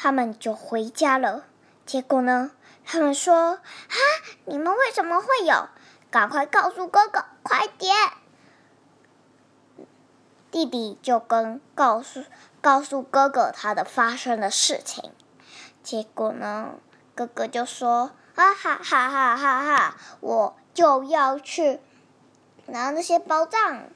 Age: 20-39